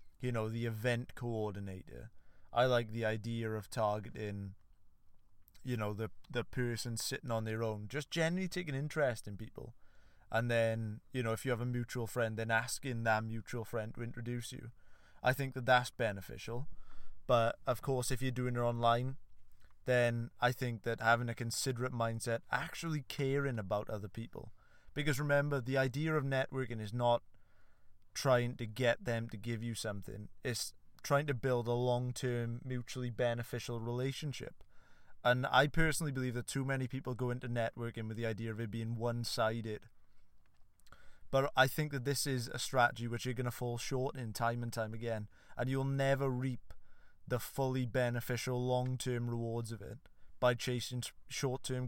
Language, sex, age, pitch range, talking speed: English, male, 20-39, 110-130 Hz, 170 wpm